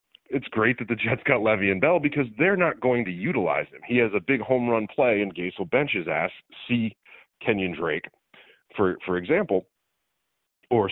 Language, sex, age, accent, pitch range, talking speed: English, male, 40-59, American, 100-140 Hz, 200 wpm